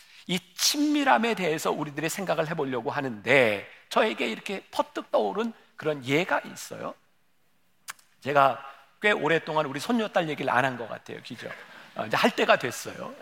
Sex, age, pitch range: male, 50-69, 145-205 Hz